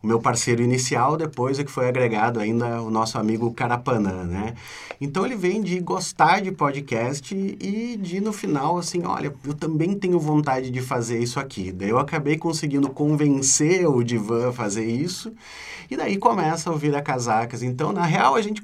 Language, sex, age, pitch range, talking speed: Portuguese, male, 30-49, 115-150 Hz, 185 wpm